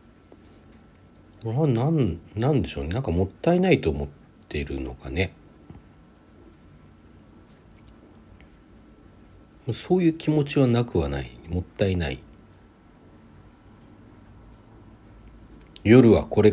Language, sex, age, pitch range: Japanese, male, 60-79, 75-110 Hz